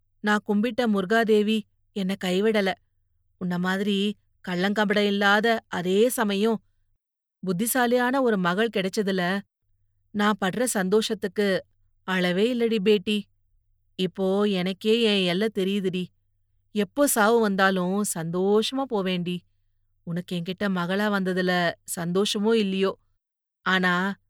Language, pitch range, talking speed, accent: Tamil, 175-215 Hz, 95 wpm, native